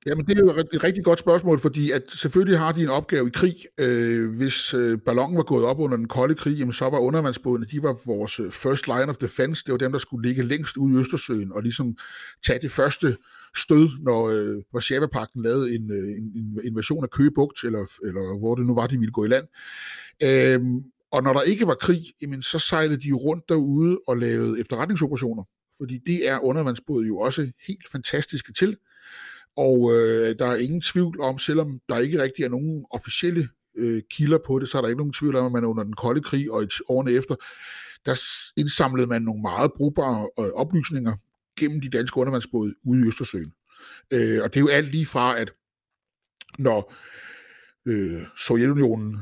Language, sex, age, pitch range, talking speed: Danish, male, 60-79, 120-155 Hz, 190 wpm